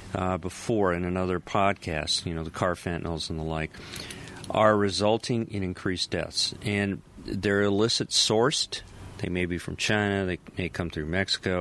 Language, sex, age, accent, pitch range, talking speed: English, male, 40-59, American, 90-110 Hz, 165 wpm